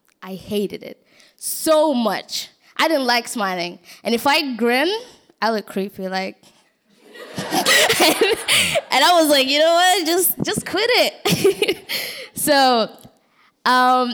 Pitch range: 215-305 Hz